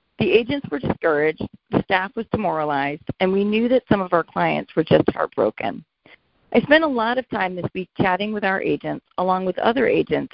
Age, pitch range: 40-59, 170-230 Hz